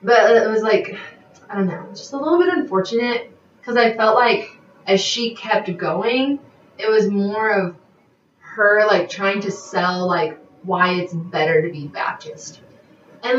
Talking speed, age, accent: 165 wpm, 20-39, American